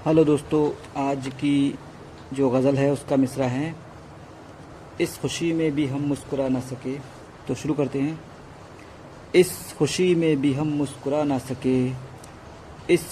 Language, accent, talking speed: Hindi, native, 140 wpm